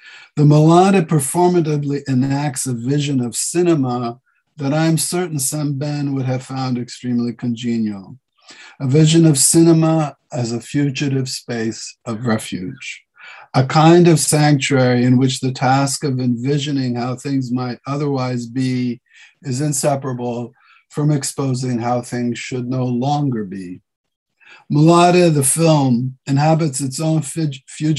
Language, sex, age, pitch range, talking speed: English, male, 50-69, 125-150 Hz, 130 wpm